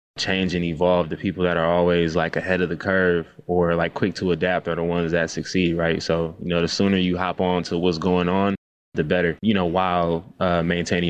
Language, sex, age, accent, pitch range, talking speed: English, male, 20-39, American, 85-100 Hz, 230 wpm